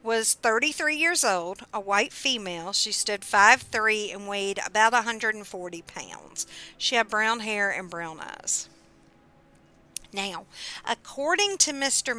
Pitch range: 210-255 Hz